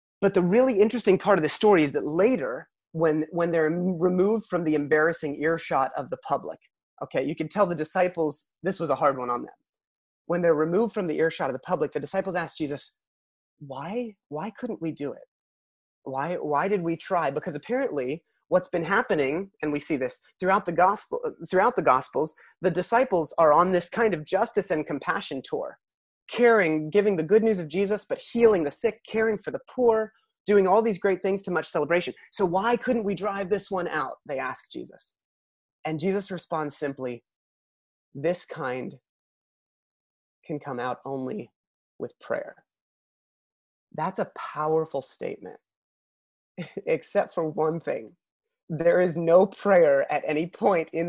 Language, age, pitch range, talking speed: English, 30-49, 155-210 Hz, 175 wpm